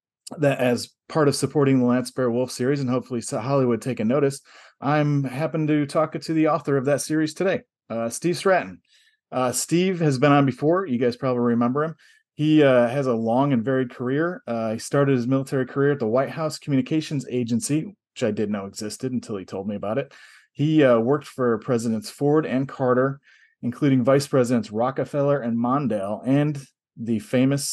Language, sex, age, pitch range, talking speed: English, male, 30-49, 120-145 Hz, 190 wpm